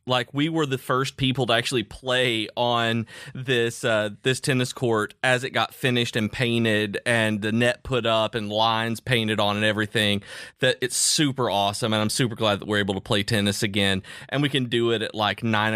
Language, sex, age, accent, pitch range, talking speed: English, male, 30-49, American, 110-130 Hz, 210 wpm